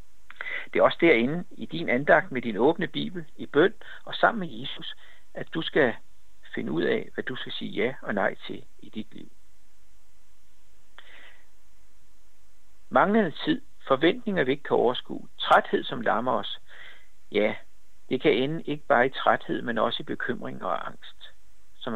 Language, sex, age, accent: Danish, male, 60-79, native